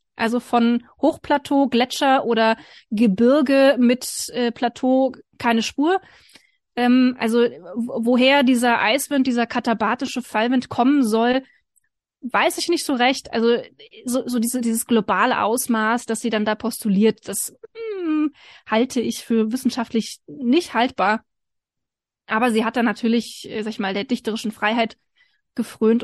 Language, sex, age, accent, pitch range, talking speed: German, female, 20-39, German, 220-260 Hz, 130 wpm